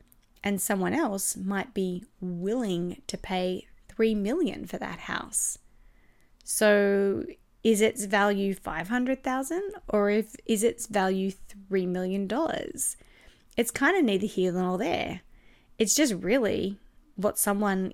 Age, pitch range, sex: 20-39, 195-235 Hz, female